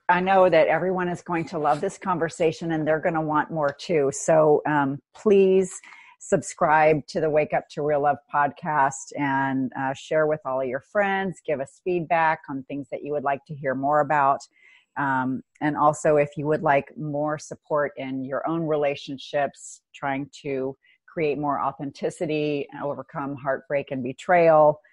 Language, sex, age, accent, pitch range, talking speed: English, female, 40-59, American, 140-160 Hz, 175 wpm